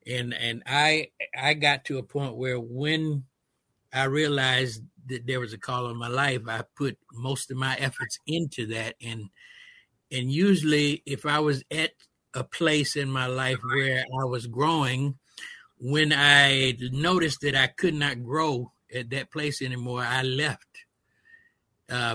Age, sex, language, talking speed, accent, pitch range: 60-79, male, English, 160 wpm, American, 120-145 Hz